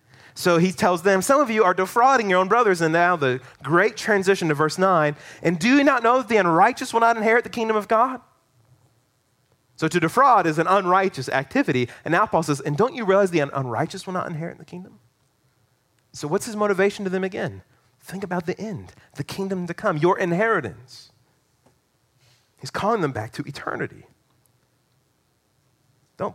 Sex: male